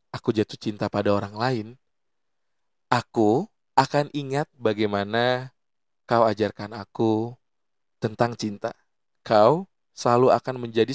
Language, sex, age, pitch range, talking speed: Indonesian, male, 20-39, 105-125 Hz, 105 wpm